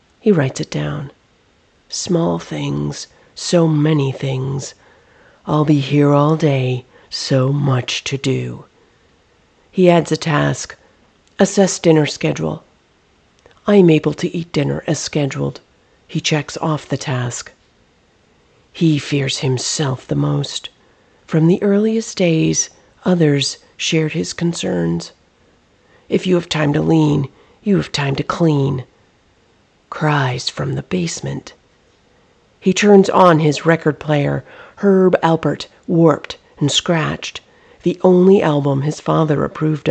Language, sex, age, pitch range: English, female, 40-59, 130-165 Hz